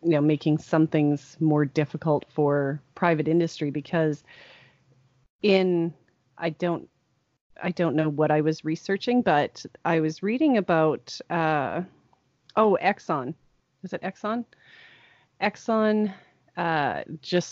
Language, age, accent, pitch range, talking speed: English, 30-49, American, 145-180 Hz, 120 wpm